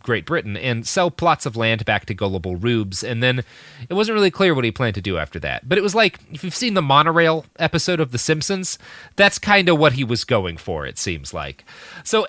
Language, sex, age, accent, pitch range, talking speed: English, male, 30-49, American, 100-160 Hz, 240 wpm